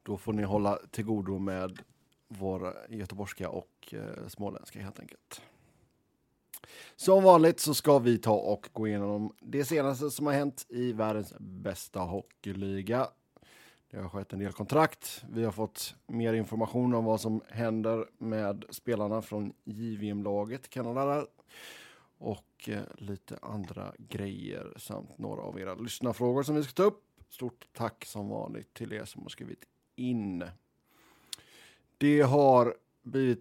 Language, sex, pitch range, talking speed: Swedish, male, 100-120 Hz, 140 wpm